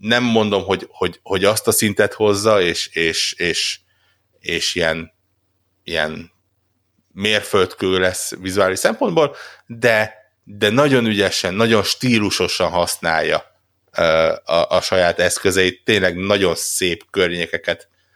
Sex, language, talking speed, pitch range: male, Hungarian, 115 wpm, 90-100 Hz